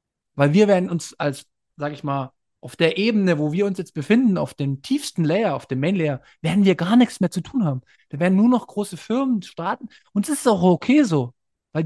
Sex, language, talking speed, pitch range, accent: male, German, 230 wpm, 145-195 Hz, German